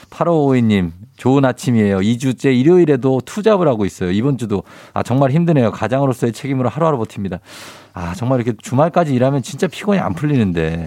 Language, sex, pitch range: Korean, male, 110-160 Hz